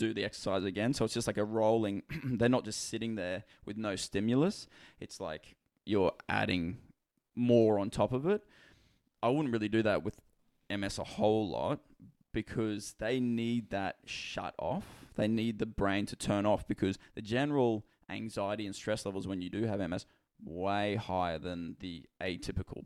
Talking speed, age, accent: 175 wpm, 20-39, Australian